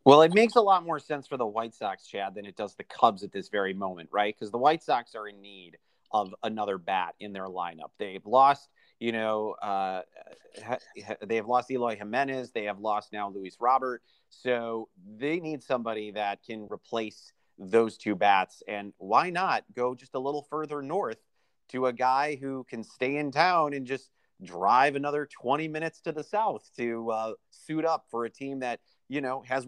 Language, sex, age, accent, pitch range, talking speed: English, male, 30-49, American, 105-140 Hz, 195 wpm